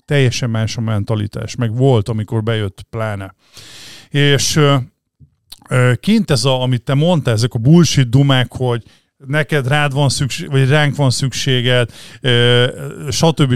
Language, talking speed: Hungarian, 135 wpm